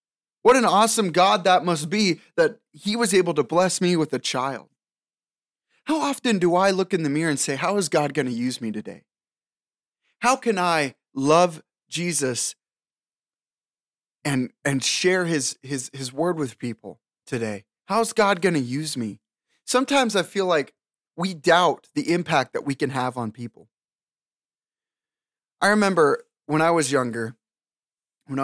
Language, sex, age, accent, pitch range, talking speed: English, male, 20-39, American, 130-185 Hz, 160 wpm